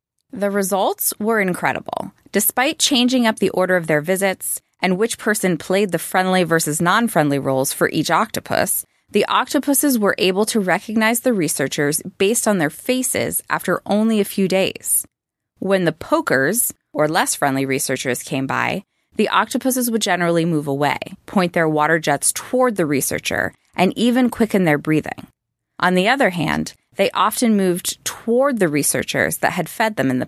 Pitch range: 155-215 Hz